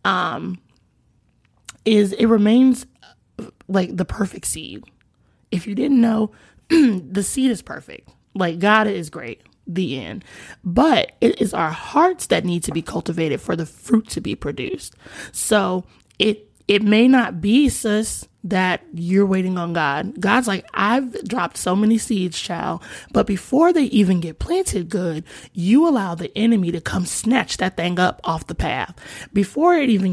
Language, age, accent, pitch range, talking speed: English, 20-39, American, 185-235 Hz, 160 wpm